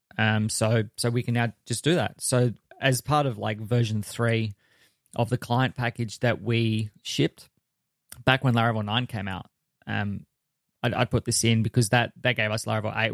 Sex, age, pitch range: male, 20-39, 110-125 Hz